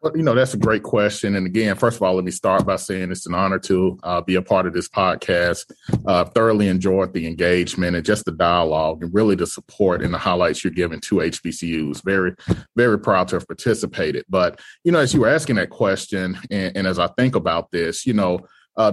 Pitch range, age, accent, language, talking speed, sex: 95-115 Hz, 30-49, American, English, 230 wpm, male